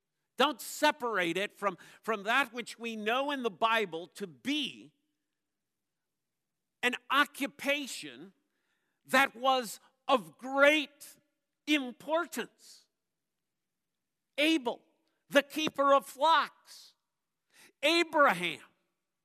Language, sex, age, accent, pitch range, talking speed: English, male, 50-69, American, 235-300 Hz, 85 wpm